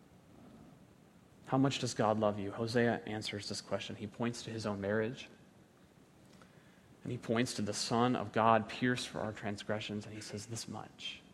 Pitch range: 105-120 Hz